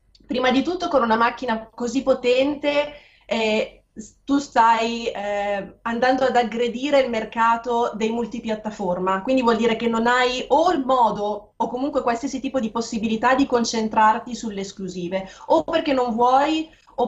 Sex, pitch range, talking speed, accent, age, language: female, 205-240 Hz, 150 wpm, native, 20-39, Italian